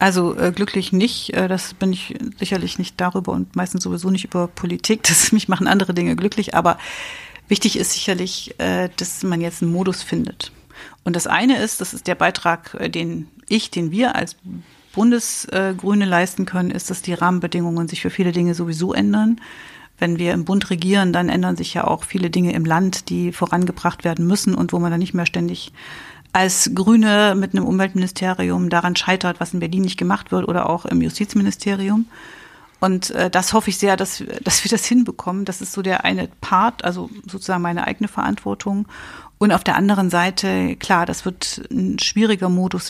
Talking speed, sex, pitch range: 185 wpm, female, 175-205 Hz